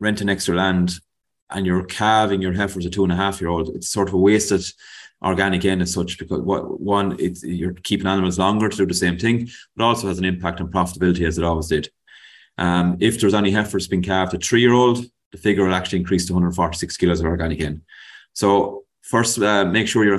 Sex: male